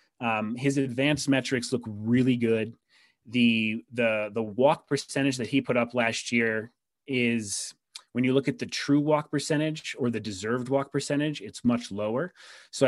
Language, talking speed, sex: English, 170 wpm, male